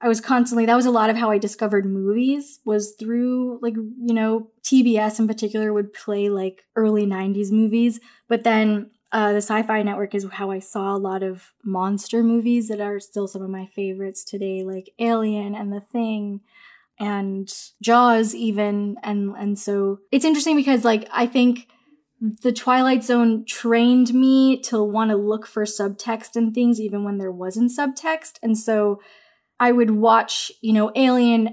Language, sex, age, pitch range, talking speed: English, female, 10-29, 205-235 Hz, 175 wpm